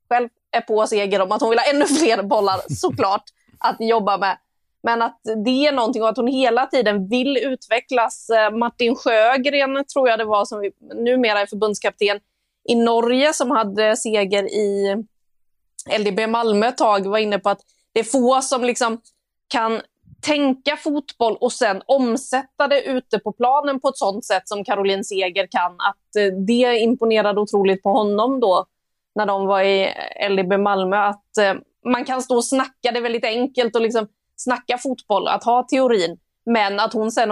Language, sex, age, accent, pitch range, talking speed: Swedish, female, 20-39, native, 200-245 Hz, 175 wpm